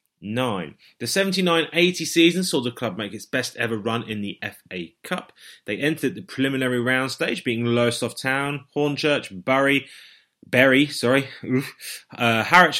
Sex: male